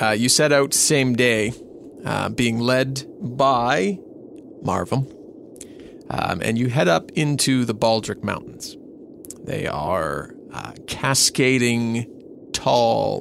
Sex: male